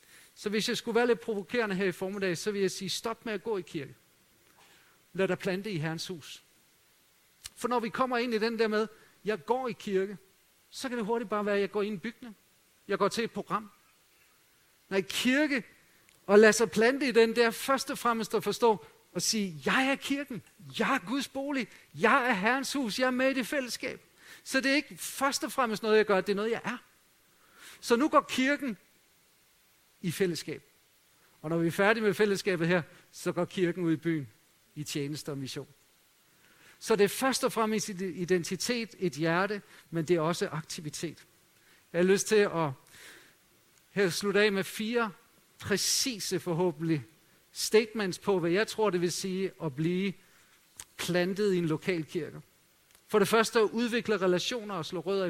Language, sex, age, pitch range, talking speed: Danish, male, 50-69, 180-230 Hz, 195 wpm